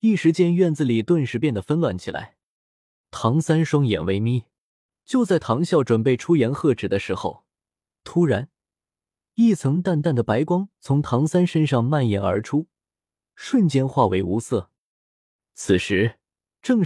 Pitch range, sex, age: 115-175 Hz, male, 20-39